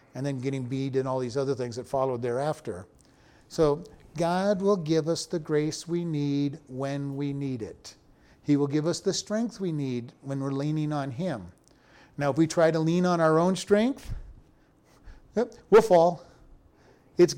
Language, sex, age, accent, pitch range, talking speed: English, male, 50-69, American, 140-175 Hz, 175 wpm